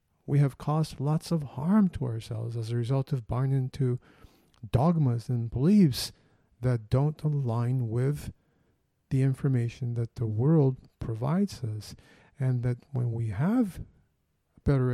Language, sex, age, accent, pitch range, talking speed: English, male, 50-69, American, 115-135 Hz, 135 wpm